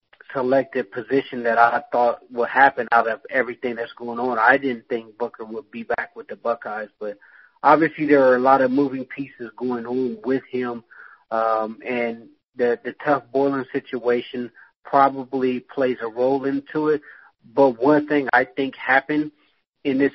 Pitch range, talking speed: 120-135 Hz, 165 wpm